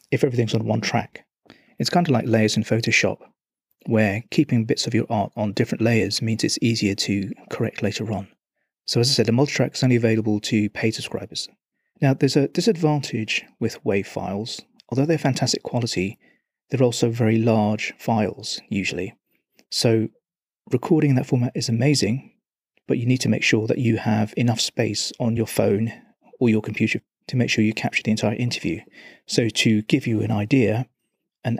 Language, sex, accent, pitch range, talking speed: English, male, British, 110-130 Hz, 180 wpm